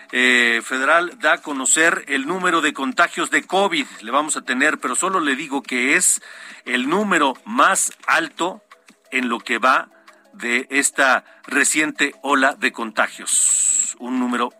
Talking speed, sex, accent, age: 150 wpm, male, Mexican, 50-69